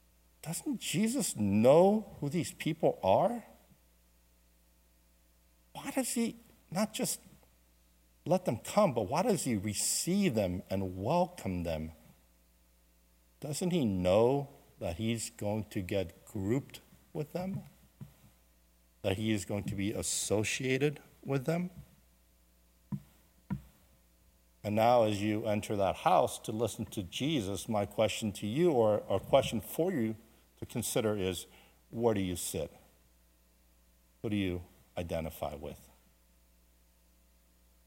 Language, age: English, 60-79